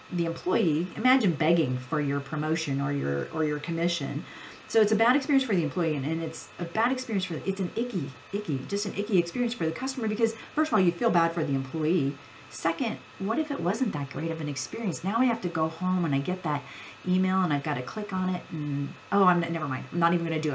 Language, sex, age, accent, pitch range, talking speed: English, female, 40-59, American, 150-195 Hz, 255 wpm